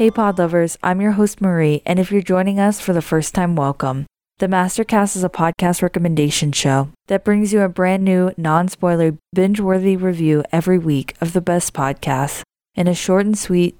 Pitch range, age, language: 155-185 Hz, 20-39, English